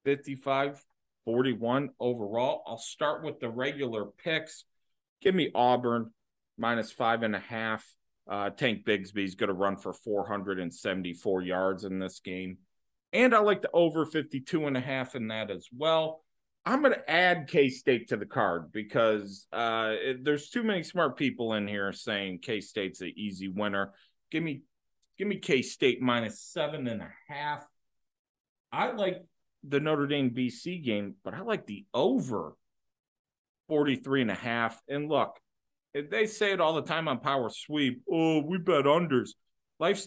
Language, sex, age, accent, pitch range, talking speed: English, male, 40-59, American, 105-155 Hz, 155 wpm